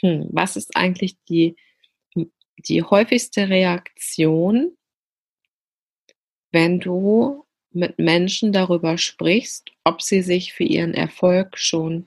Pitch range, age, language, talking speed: 170-210 Hz, 30-49, German, 100 wpm